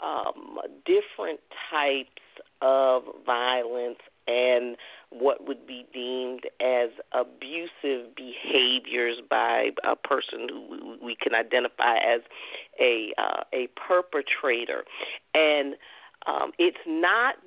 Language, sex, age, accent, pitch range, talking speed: English, female, 40-59, American, 130-180 Hz, 100 wpm